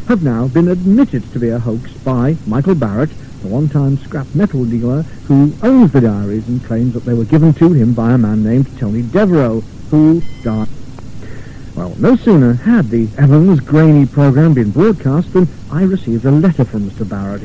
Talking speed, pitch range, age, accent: 185 wpm, 115-165 Hz, 60-79, British